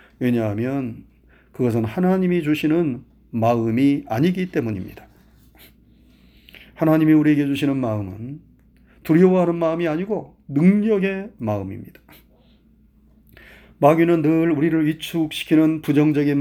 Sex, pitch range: male, 125-175 Hz